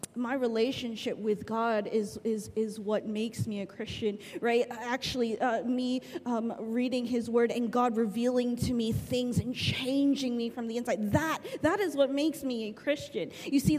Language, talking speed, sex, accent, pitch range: English, 180 wpm, female, American, 250-325 Hz